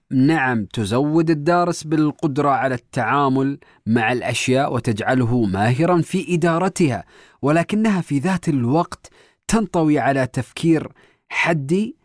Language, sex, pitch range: Arabic, male, 135-190 Hz